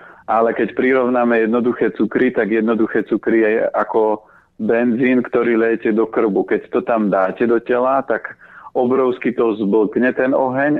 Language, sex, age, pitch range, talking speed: Slovak, male, 40-59, 105-120 Hz, 150 wpm